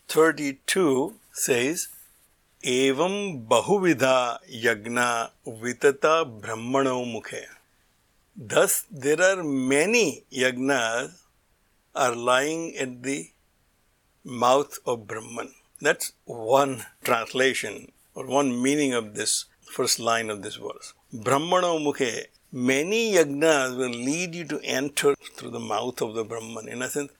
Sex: male